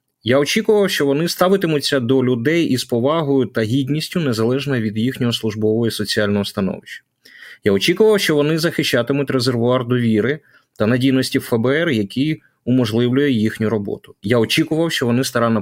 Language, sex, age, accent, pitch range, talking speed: Ukrainian, male, 30-49, native, 110-155 Hz, 140 wpm